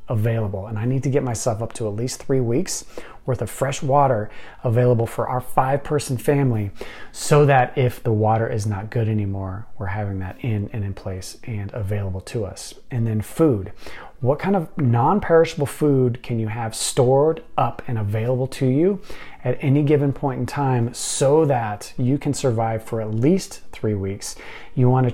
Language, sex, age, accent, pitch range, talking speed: English, male, 30-49, American, 110-140 Hz, 185 wpm